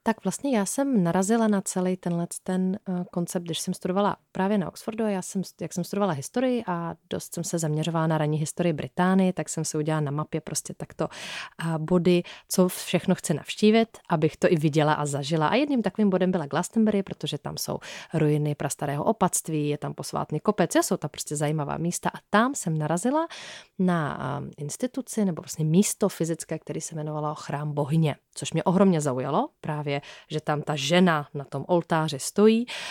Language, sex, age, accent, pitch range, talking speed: Czech, female, 30-49, native, 150-190 Hz, 185 wpm